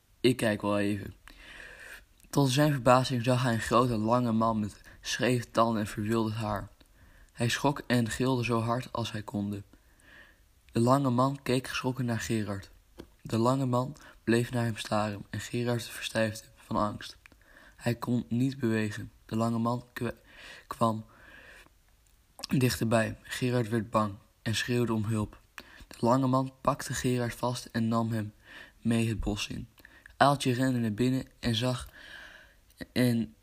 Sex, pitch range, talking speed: male, 110-125 Hz, 150 wpm